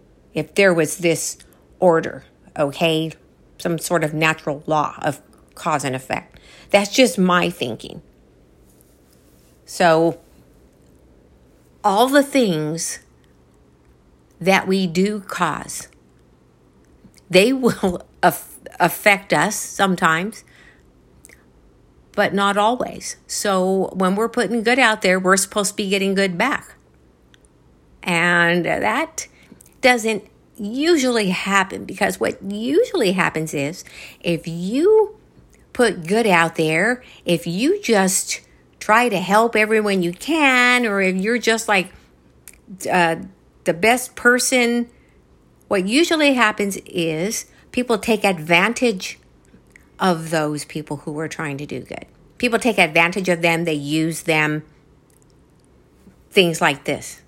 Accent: American